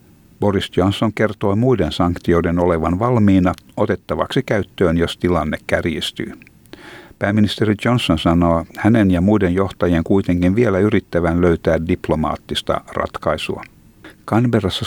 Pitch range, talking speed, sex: 90-110 Hz, 105 wpm, male